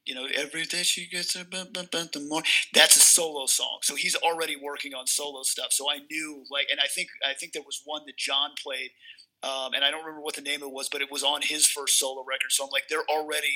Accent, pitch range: American, 145-185 Hz